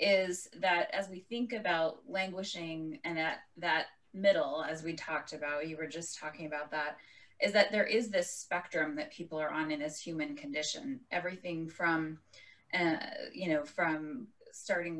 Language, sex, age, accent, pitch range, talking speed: English, female, 20-39, American, 160-215 Hz, 170 wpm